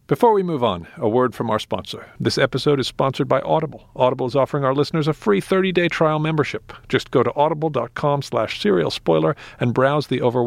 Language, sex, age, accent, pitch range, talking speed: English, male, 50-69, American, 115-145 Hz, 200 wpm